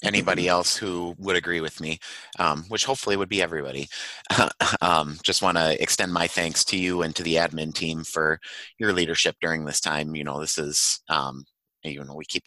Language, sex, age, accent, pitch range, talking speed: English, male, 30-49, American, 75-85 Hz, 200 wpm